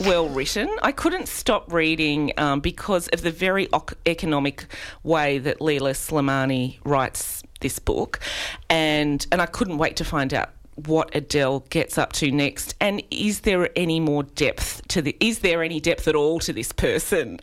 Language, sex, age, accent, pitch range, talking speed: English, female, 30-49, Australian, 140-175 Hz, 175 wpm